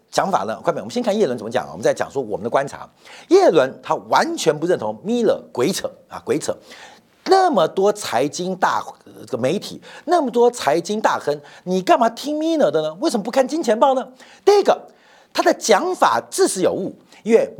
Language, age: Chinese, 50-69